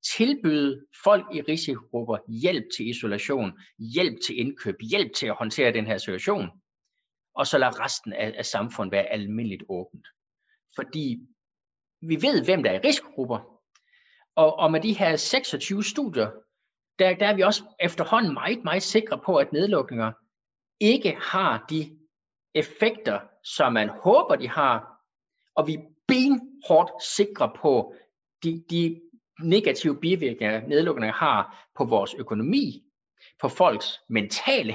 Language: Danish